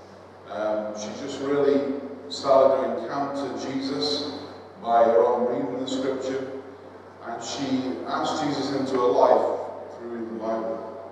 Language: English